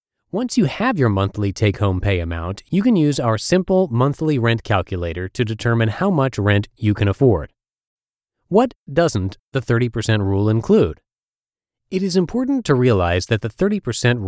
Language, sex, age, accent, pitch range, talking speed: English, male, 30-49, American, 100-145 Hz, 160 wpm